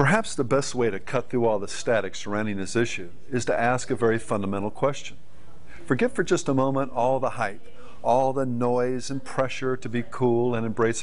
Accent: American